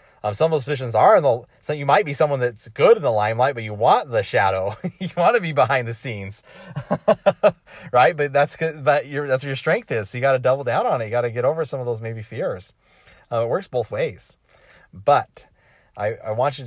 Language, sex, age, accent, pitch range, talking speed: English, male, 30-49, American, 95-125 Hz, 250 wpm